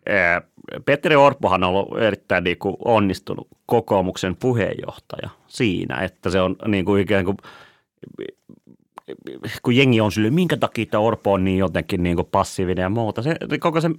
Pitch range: 90-110 Hz